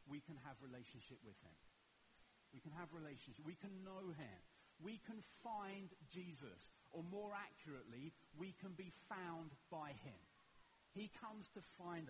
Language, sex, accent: English, male, British